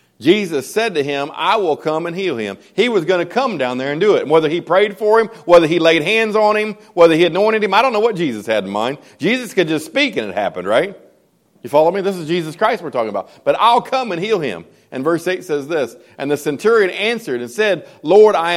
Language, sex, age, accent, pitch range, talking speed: English, male, 40-59, American, 150-210 Hz, 260 wpm